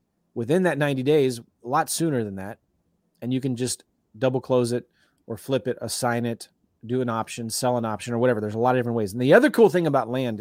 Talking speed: 240 wpm